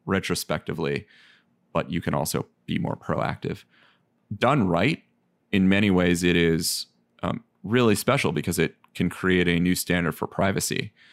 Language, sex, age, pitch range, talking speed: English, male, 30-49, 85-95 Hz, 145 wpm